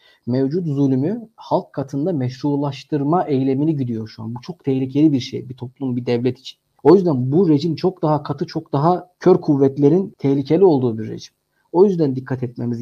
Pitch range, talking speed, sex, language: 130-165 Hz, 180 wpm, male, Turkish